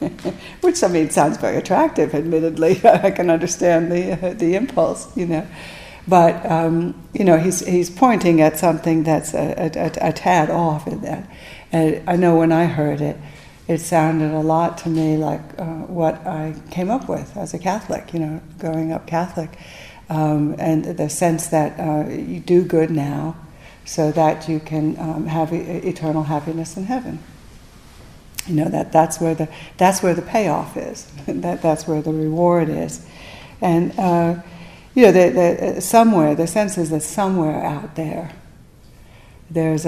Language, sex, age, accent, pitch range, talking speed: English, female, 60-79, American, 155-175 Hz, 170 wpm